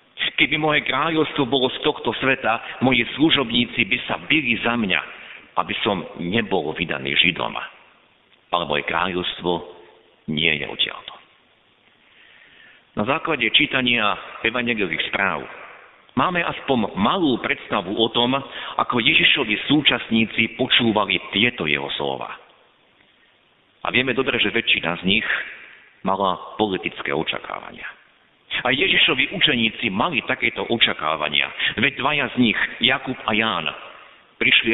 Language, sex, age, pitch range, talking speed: Slovak, male, 50-69, 105-140 Hz, 115 wpm